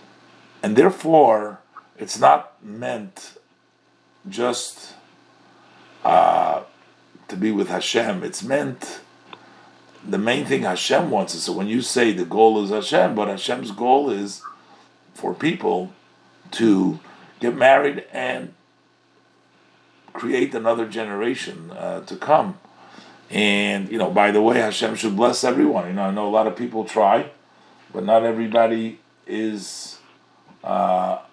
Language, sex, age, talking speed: English, male, 50-69, 130 wpm